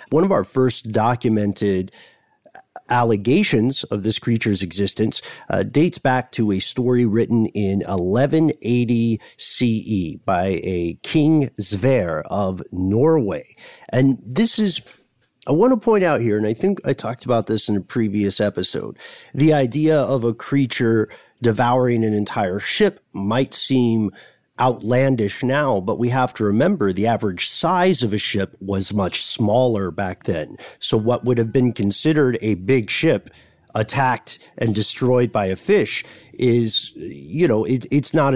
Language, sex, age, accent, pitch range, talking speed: English, male, 40-59, American, 105-140 Hz, 150 wpm